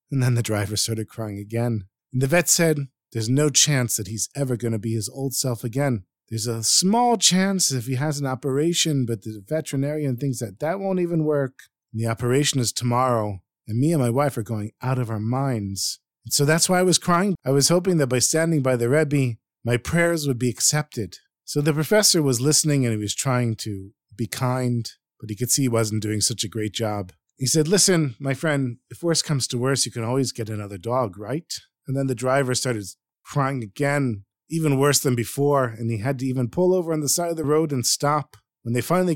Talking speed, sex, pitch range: 225 wpm, male, 115-150 Hz